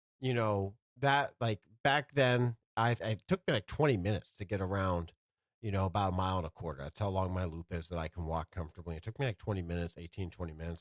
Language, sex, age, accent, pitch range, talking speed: English, male, 40-59, American, 85-115 Hz, 245 wpm